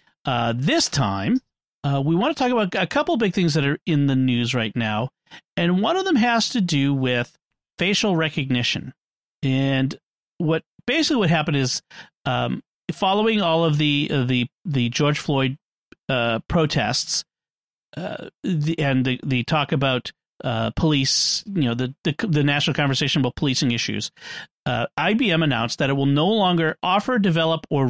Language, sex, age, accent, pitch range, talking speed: English, male, 40-59, American, 130-175 Hz, 170 wpm